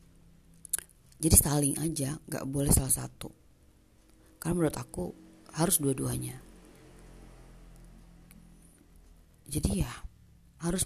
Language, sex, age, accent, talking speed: Indonesian, female, 30-49, native, 85 wpm